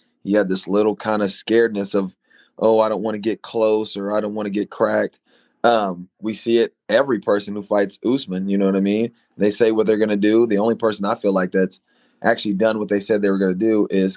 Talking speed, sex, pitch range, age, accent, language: 260 wpm, male, 95-115 Hz, 20-39, American, English